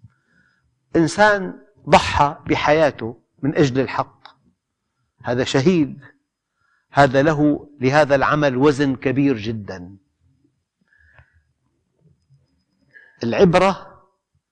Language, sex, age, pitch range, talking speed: Arabic, male, 50-69, 130-170 Hz, 65 wpm